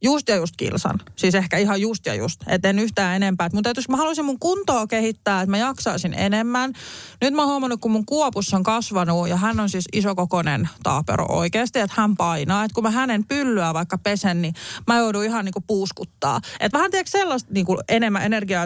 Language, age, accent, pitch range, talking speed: Finnish, 30-49, native, 180-230 Hz, 205 wpm